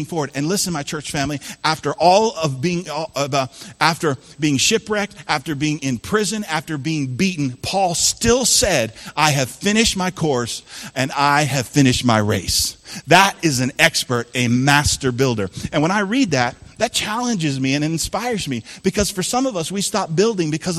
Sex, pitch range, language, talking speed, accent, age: male, 135-195 Hz, English, 175 wpm, American, 40-59